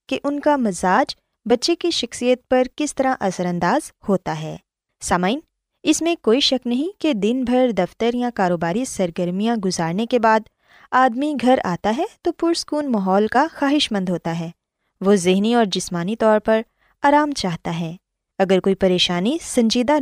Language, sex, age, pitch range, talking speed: Urdu, female, 20-39, 195-285 Hz, 165 wpm